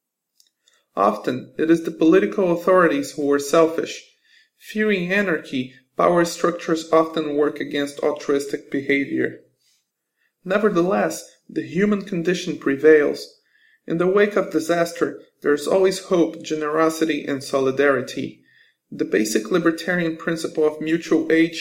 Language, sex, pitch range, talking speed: English, male, 145-180 Hz, 115 wpm